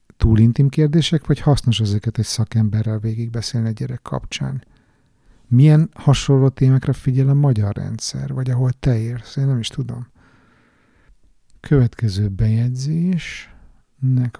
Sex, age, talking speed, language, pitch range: male, 50-69, 125 wpm, Hungarian, 110-135 Hz